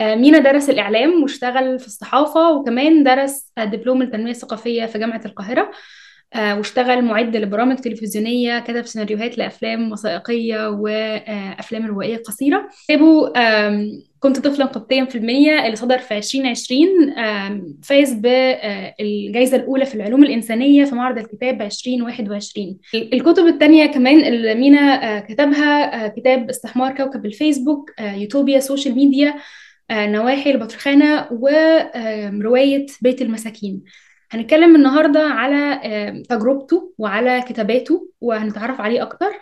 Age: 10-29